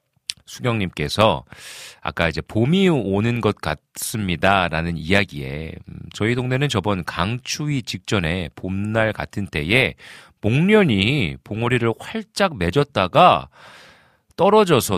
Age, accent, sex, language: 40-59, native, male, Korean